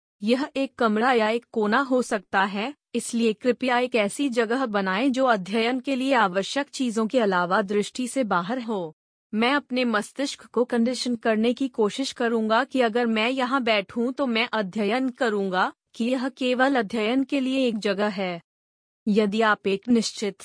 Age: 30-49